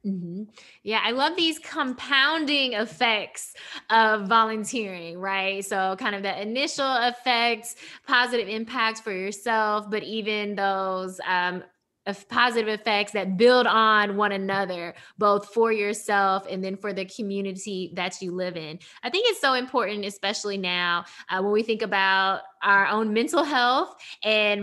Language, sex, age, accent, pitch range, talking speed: English, female, 20-39, American, 195-230 Hz, 150 wpm